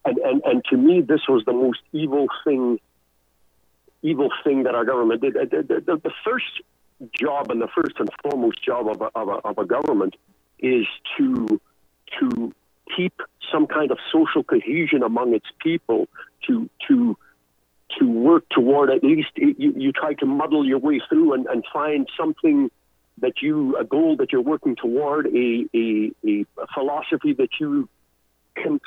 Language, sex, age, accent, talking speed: English, male, 50-69, American, 175 wpm